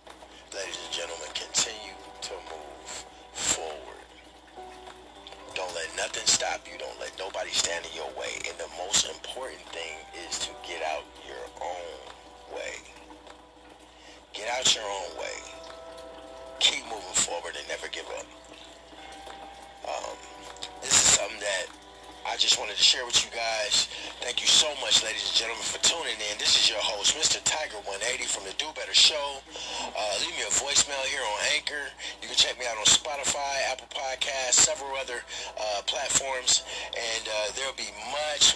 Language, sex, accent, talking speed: English, male, American, 160 wpm